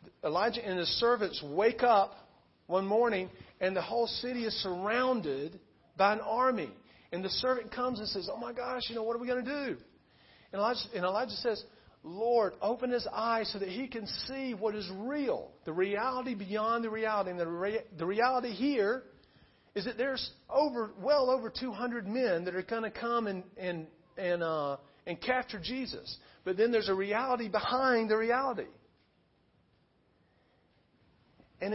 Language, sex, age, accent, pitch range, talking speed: English, male, 50-69, American, 170-235 Hz, 170 wpm